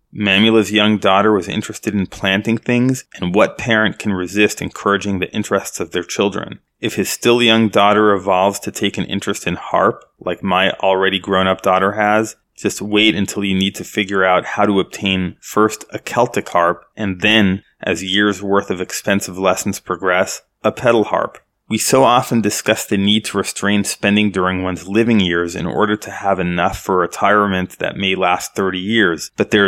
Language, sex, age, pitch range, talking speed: English, male, 30-49, 95-110 Hz, 185 wpm